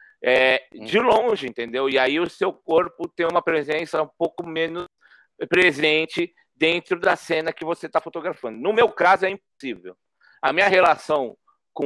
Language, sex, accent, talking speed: Portuguese, male, Brazilian, 160 wpm